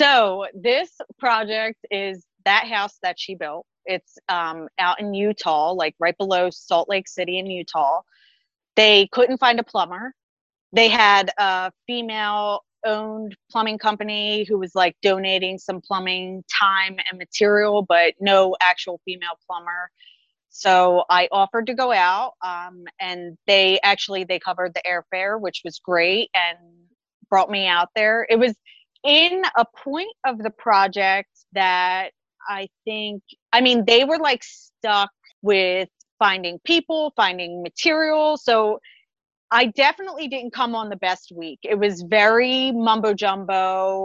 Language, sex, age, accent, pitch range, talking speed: English, female, 30-49, American, 185-235 Hz, 145 wpm